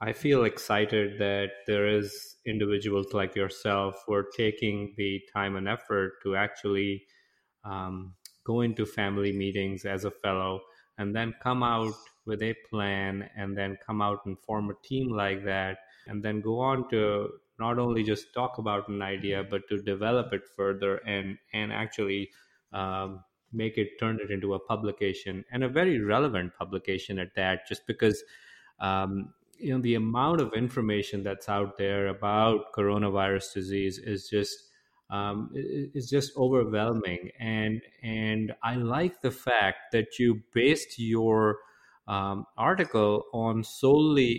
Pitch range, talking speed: 100-115 Hz, 155 wpm